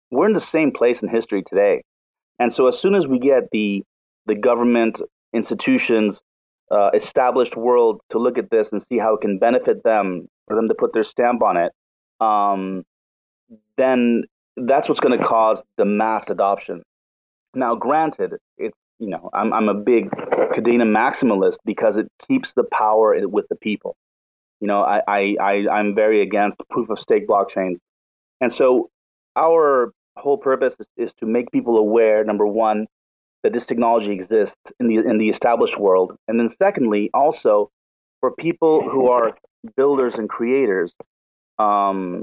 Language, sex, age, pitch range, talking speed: English, male, 30-49, 105-135 Hz, 170 wpm